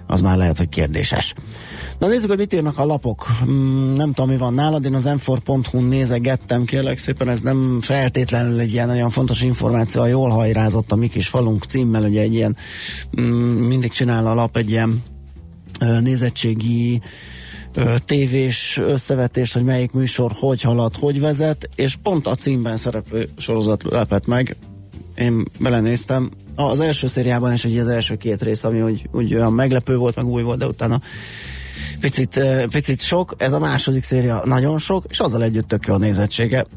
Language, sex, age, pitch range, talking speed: Hungarian, male, 30-49, 110-130 Hz, 170 wpm